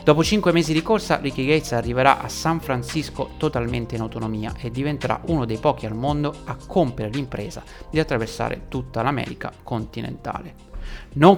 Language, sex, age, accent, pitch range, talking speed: Italian, male, 30-49, native, 120-155 Hz, 160 wpm